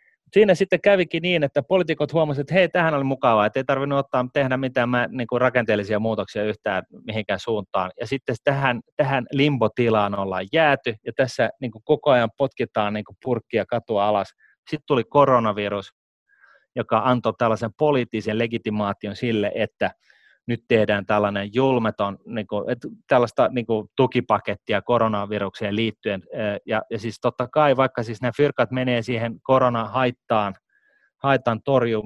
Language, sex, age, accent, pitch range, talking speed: Finnish, male, 30-49, native, 110-140 Hz, 140 wpm